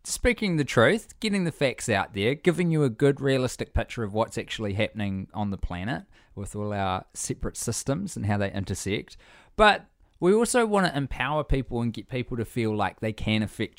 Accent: Australian